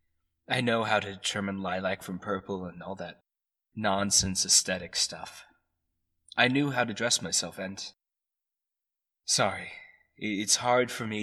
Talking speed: 140 wpm